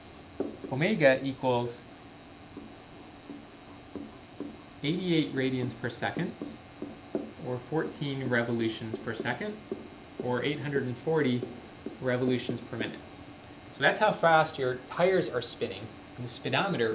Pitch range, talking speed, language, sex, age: 125-155 Hz, 95 wpm, English, male, 30-49